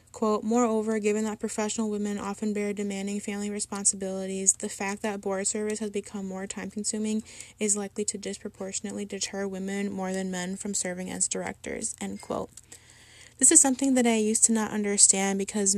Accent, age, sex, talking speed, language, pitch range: American, 10-29, female, 170 wpm, English, 190-215 Hz